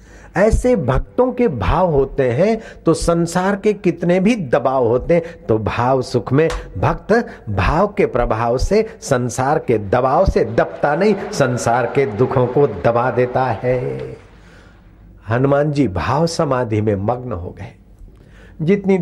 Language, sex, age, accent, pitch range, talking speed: Hindi, male, 60-79, native, 95-135 Hz, 140 wpm